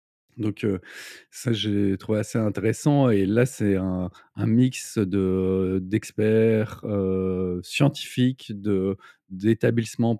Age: 30-49